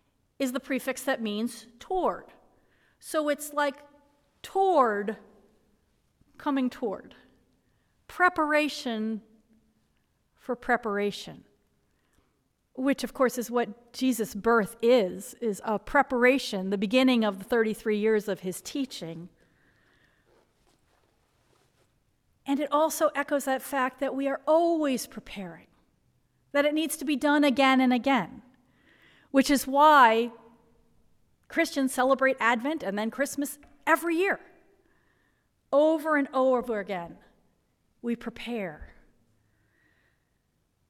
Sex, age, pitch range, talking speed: female, 40-59, 220-285 Hz, 105 wpm